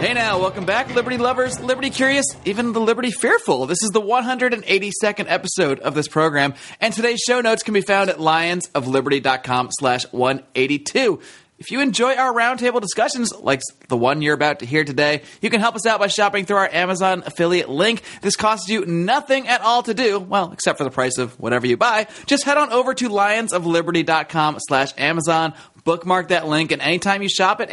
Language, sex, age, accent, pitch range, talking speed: English, male, 30-49, American, 145-215 Hz, 195 wpm